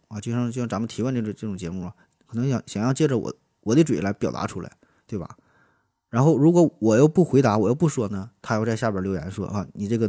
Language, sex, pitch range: Chinese, male, 105-130 Hz